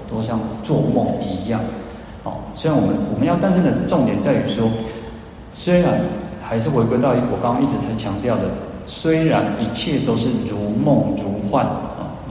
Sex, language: male, Chinese